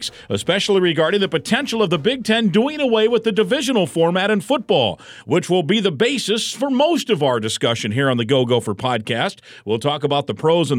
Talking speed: 210 wpm